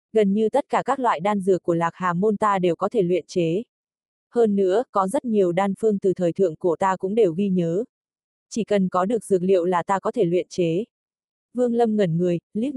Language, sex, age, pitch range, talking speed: Vietnamese, female, 20-39, 180-220 Hz, 240 wpm